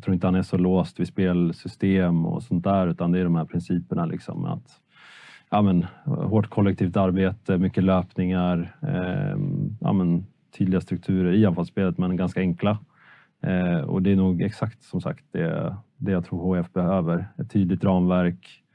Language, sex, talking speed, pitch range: Swedish, male, 175 wpm, 90-110 Hz